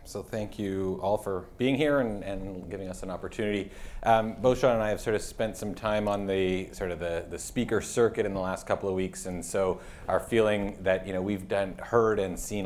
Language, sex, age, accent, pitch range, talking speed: English, male, 30-49, American, 90-105 Hz, 235 wpm